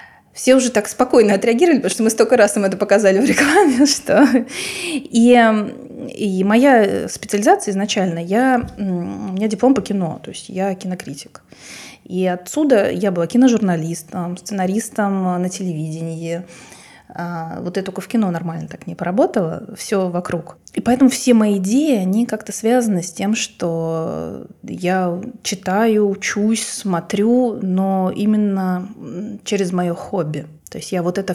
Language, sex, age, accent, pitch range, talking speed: Russian, female, 20-39, native, 180-225 Hz, 140 wpm